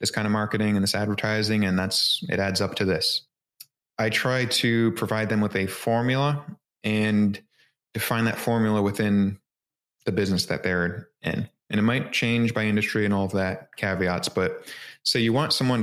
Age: 20-39